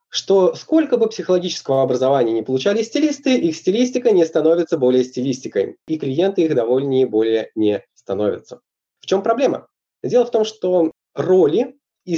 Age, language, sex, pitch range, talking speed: 20-39, Russian, male, 145-225 Hz, 155 wpm